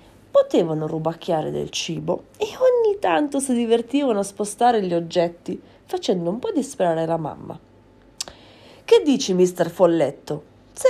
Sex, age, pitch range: female, 30-49, 165-270 Hz